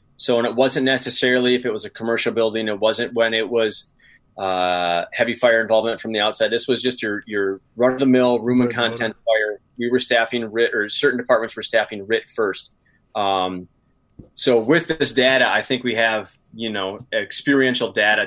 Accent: American